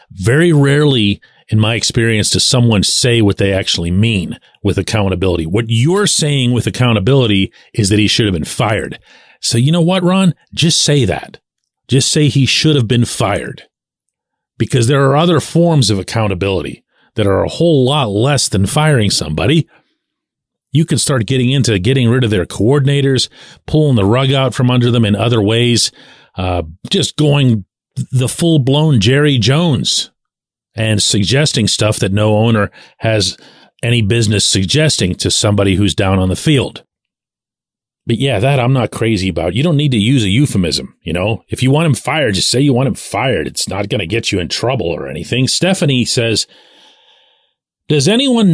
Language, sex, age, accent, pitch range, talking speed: English, male, 40-59, American, 105-145 Hz, 175 wpm